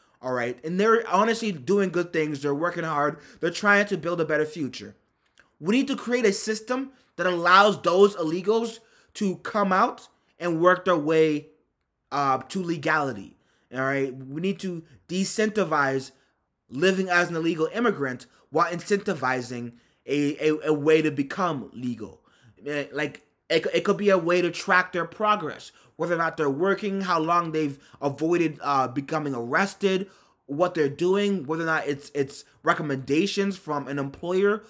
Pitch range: 145-200 Hz